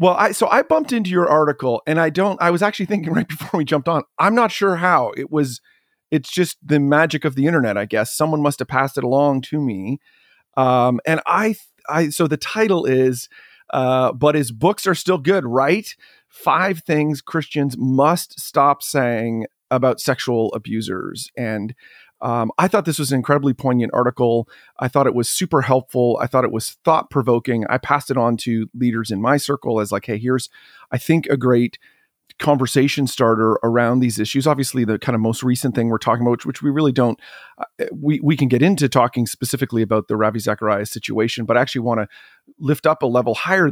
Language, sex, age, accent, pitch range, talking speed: English, male, 40-59, American, 115-150 Hz, 205 wpm